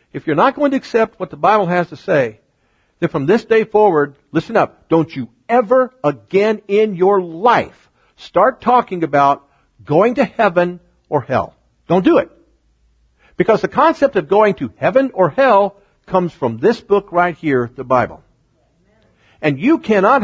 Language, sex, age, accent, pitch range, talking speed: English, male, 50-69, American, 150-225 Hz, 170 wpm